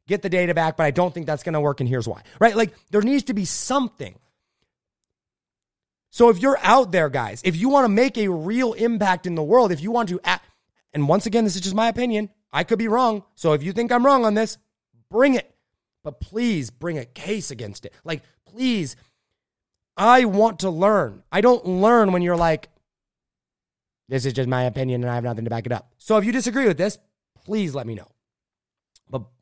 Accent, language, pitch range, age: American, English, 135-220 Hz, 30-49